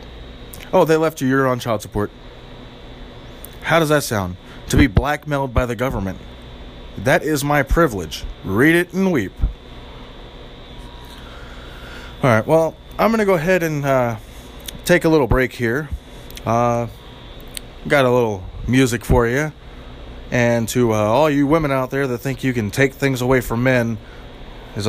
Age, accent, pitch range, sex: 20-39, American, 100-140 Hz, male